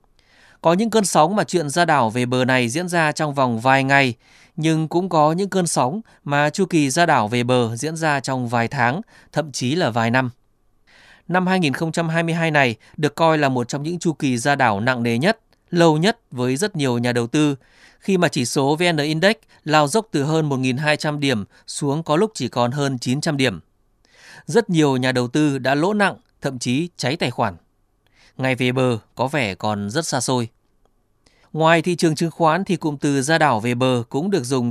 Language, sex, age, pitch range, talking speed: Vietnamese, male, 20-39, 125-165 Hz, 210 wpm